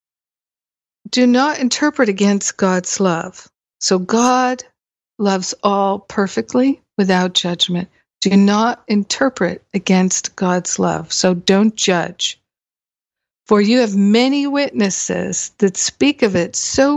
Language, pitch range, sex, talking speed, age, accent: English, 185-230 Hz, female, 115 wpm, 60-79, American